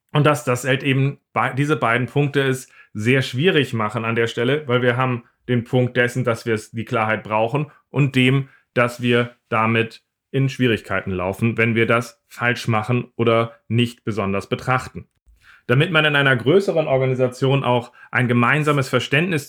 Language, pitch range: German, 115-135 Hz